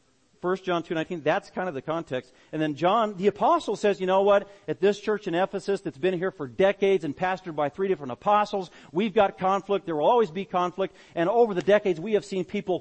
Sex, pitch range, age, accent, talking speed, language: male, 140-200 Hz, 40-59, American, 235 wpm, English